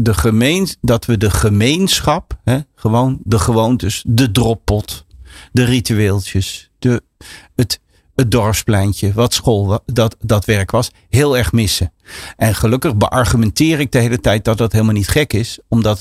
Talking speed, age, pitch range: 155 wpm, 50-69, 105-130 Hz